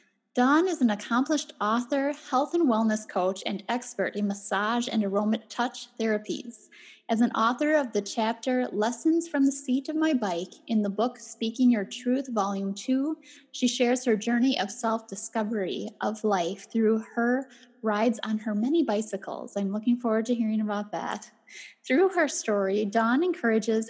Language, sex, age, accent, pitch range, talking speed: English, female, 10-29, American, 215-255 Hz, 165 wpm